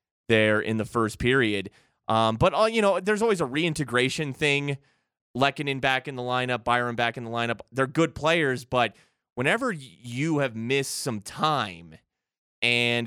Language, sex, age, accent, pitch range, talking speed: English, male, 20-39, American, 115-145 Hz, 165 wpm